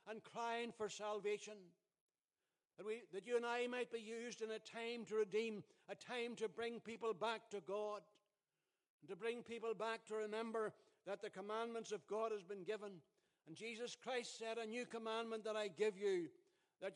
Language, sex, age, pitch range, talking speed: English, male, 60-79, 200-230 Hz, 190 wpm